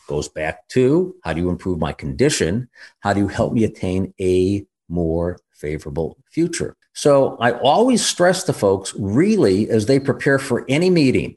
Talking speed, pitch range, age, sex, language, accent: 170 wpm, 95-135 Hz, 50-69, male, English, American